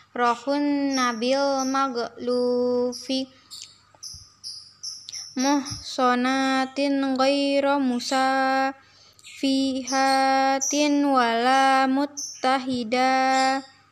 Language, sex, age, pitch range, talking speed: English, female, 20-39, 255-285 Hz, 45 wpm